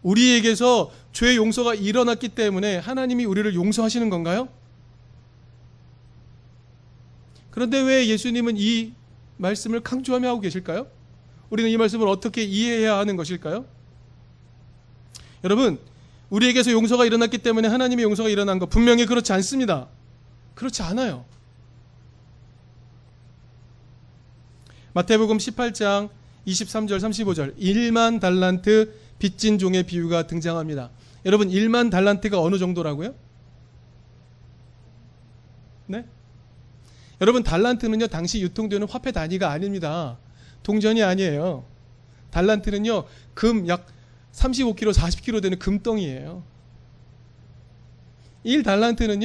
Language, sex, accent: Korean, male, native